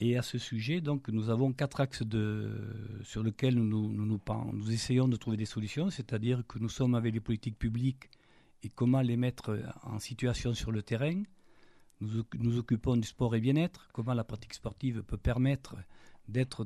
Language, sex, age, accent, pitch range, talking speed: French, male, 50-69, French, 110-135 Hz, 190 wpm